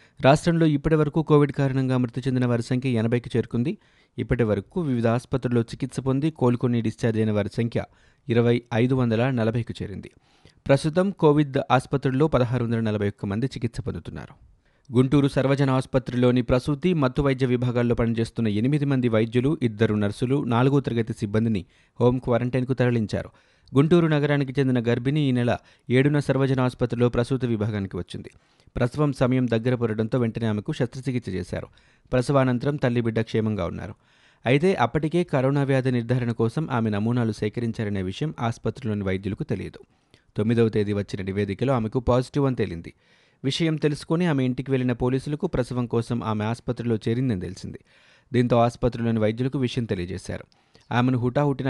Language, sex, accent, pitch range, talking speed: Telugu, male, native, 115-135 Hz, 130 wpm